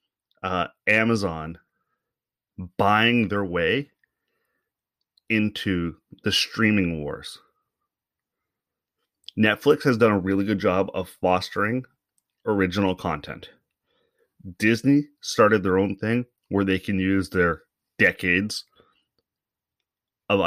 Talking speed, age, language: 95 wpm, 30-49, English